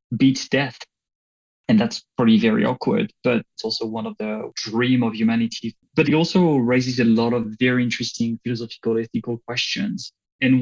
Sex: male